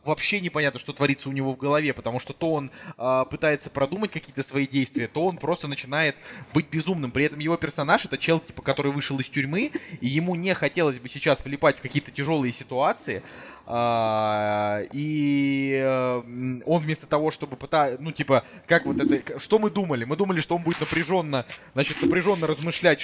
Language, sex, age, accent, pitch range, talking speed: Russian, male, 20-39, native, 130-160 Hz, 180 wpm